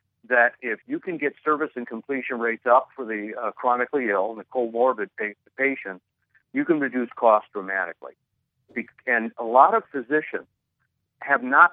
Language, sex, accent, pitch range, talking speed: English, male, American, 110-135 Hz, 165 wpm